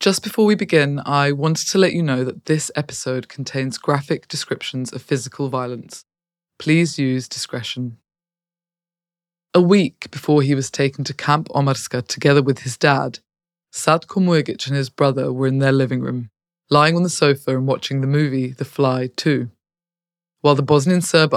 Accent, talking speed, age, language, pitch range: British, 165 wpm, 20-39, English, 130-155 Hz